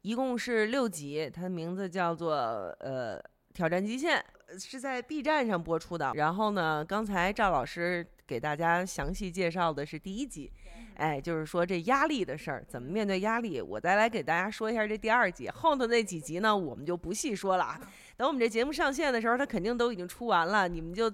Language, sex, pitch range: Chinese, female, 165-215 Hz